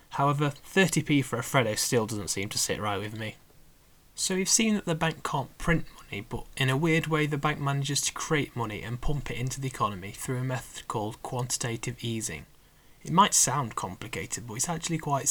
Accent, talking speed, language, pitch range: British, 210 wpm, English, 115-145 Hz